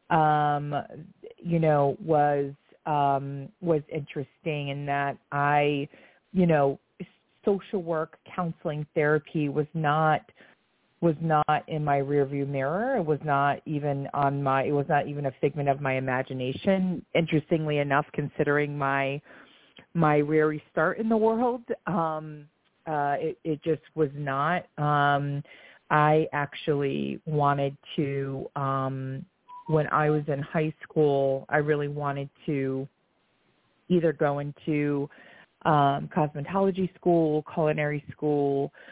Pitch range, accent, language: 140-160 Hz, American, English